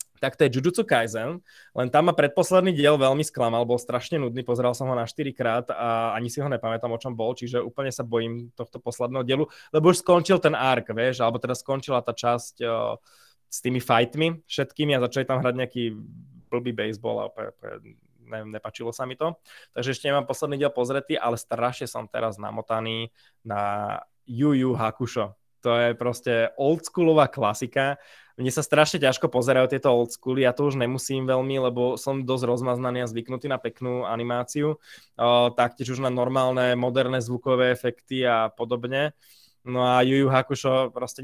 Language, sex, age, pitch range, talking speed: Slovak, male, 20-39, 120-135 Hz, 175 wpm